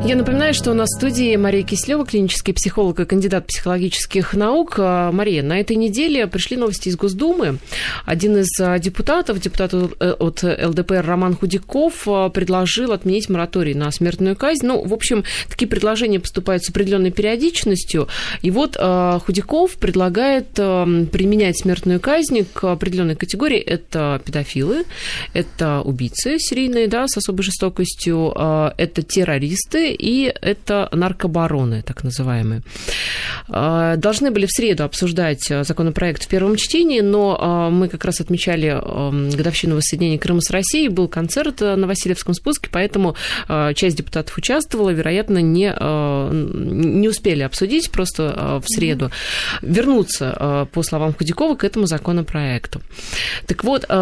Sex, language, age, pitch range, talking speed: female, Russian, 20-39, 165-210 Hz, 130 wpm